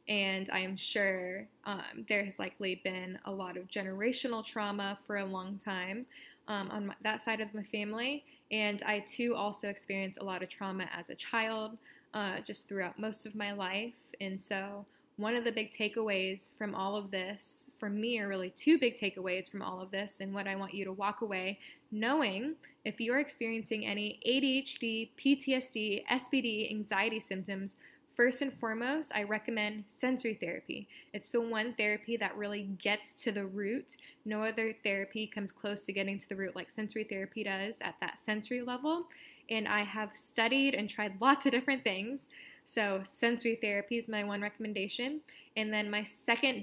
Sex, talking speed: female, 180 wpm